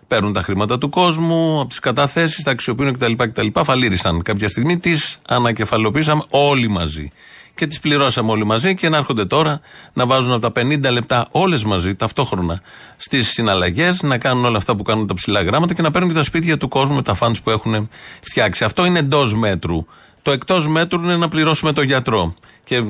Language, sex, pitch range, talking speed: Greek, male, 105-145 Hz, 195 wpm